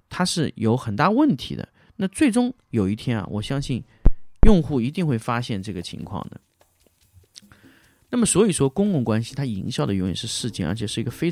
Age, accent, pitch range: 30-49, native, 100-150 Hz